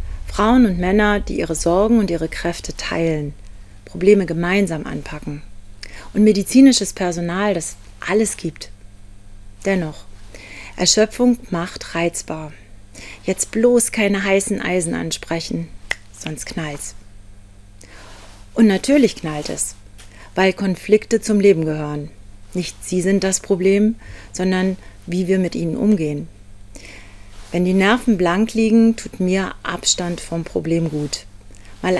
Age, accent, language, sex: 40-59, German, German, female